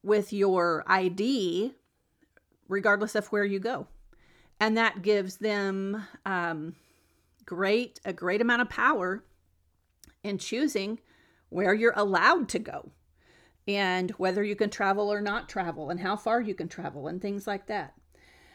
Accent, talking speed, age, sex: American, 140 wpm, 40-59, female